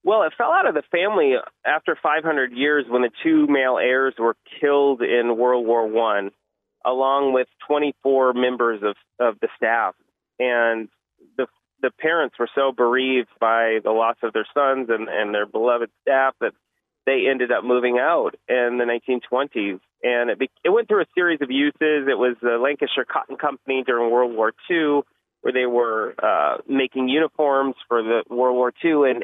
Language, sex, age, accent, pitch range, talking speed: English, male, 30-49, American, 115-135 Hz, 180 wpm